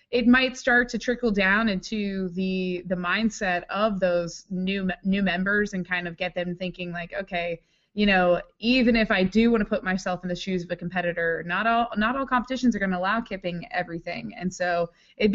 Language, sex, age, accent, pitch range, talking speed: English, female, 20-39, American, 175-205 Hz, 205 wpm